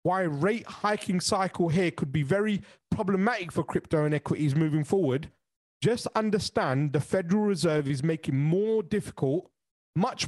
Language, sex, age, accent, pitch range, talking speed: English, male, 30-49, British, 155-215 Hz, 145 wpm